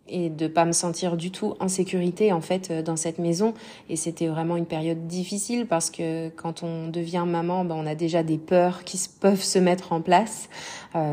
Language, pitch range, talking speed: French, 165-195 Hz, 215 wpm